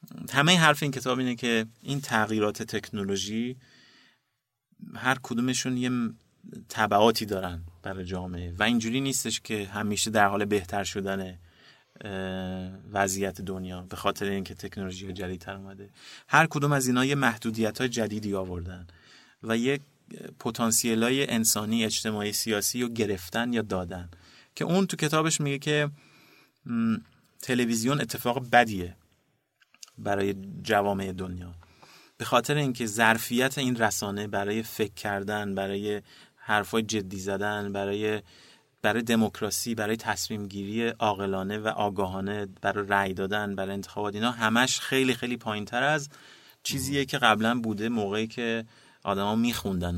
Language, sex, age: Persian, male, 30-49